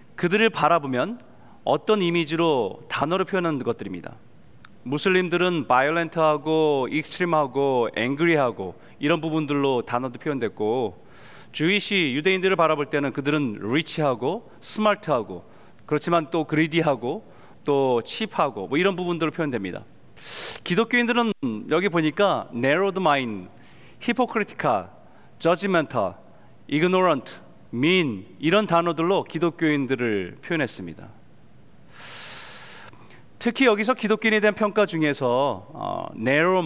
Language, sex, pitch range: Korean, male, 140-190 Hz